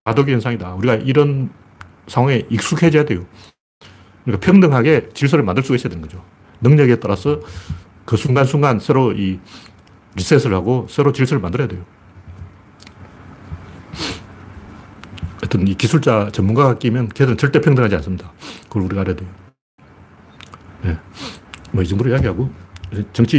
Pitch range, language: 95-125 Hz, Korean